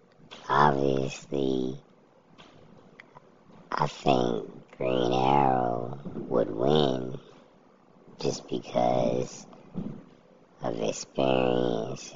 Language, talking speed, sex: English, 55 wpm, male